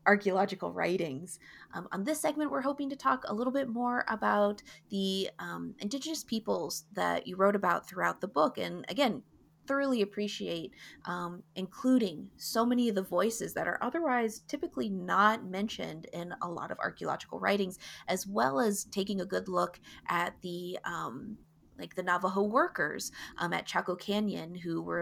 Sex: female